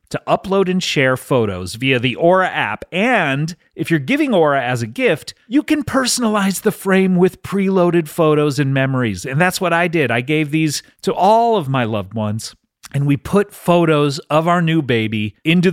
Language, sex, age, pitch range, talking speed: English, male, 30-49, 130-180 Hz, 190 wpm